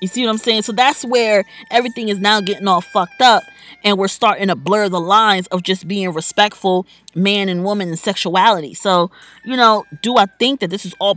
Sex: female